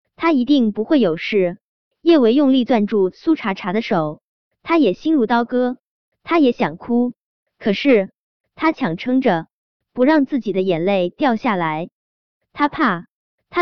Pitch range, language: 200-275 Hz, Chinese